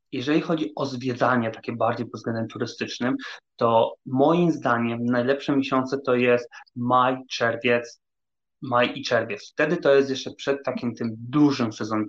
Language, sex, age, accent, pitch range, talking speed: Polish, male, 30-49, native, 120-140 Hz, 150 wpm